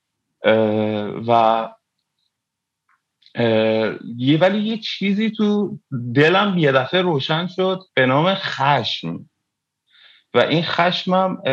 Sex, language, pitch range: male, Persian, 110-155 Hz